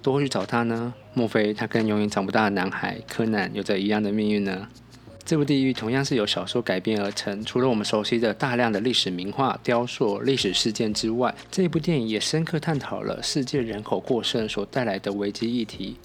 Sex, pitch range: male, 110-135 Hz